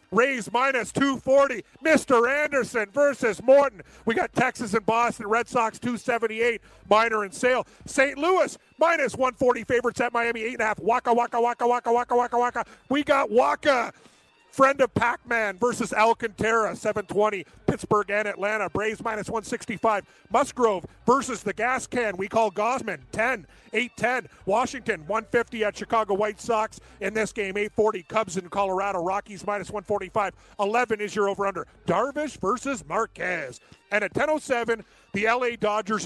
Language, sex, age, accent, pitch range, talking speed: English, male, 40-59, American, 205-240 Hz, 150 wpm